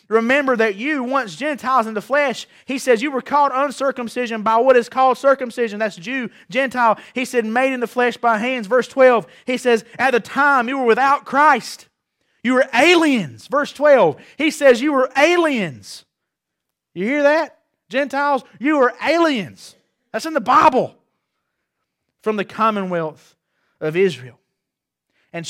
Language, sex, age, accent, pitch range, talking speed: English, male, 30-49, American, 180-260 Hz, 160 wpm